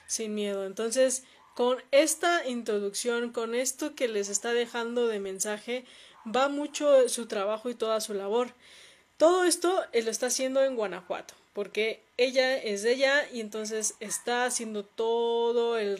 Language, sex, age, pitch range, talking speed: Spanish, female, 20-39, 210-255 Hz, 150 wpm